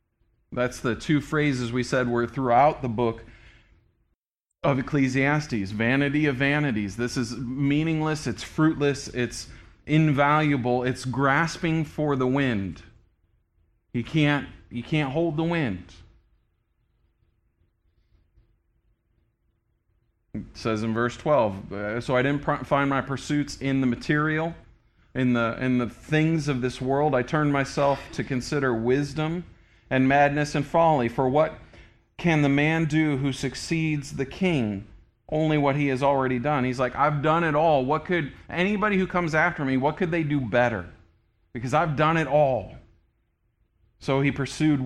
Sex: male